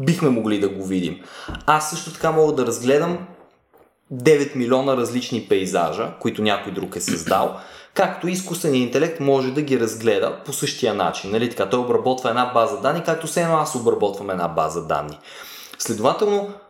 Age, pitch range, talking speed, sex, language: 20-39, 120-155 Hz, 165 wpm, male, Bulgarian